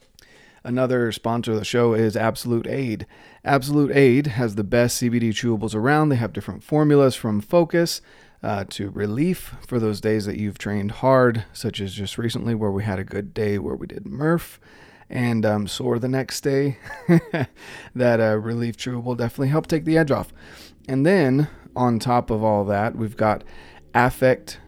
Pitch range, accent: 105-130 Hz, American